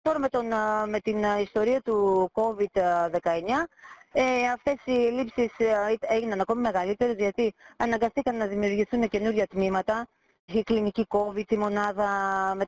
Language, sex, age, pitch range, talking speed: Greek, female, 20-39, 185-235 Hz, 130 wpm